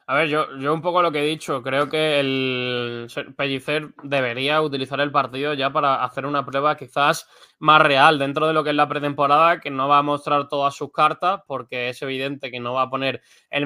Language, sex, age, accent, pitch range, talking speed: Spanish, male, 20-39, Spanish, 135-155 Hz, 220 wpm